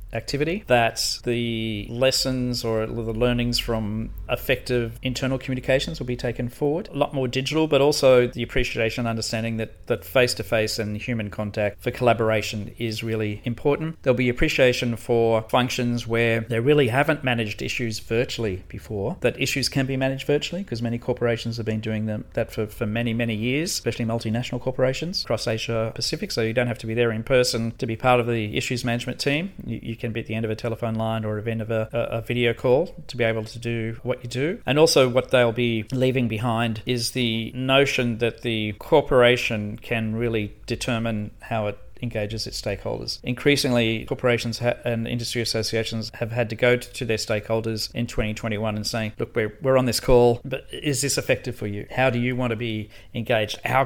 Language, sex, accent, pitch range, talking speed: English, male, Australian, 110-125 Hz, 195 wpm